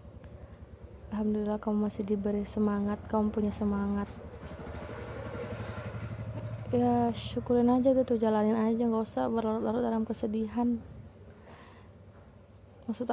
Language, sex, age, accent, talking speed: Indonesian, female, 20-39, native, 95 wpm